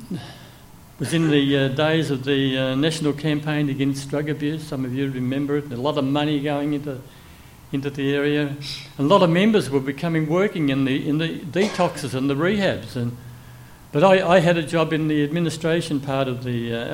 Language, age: English, 60-79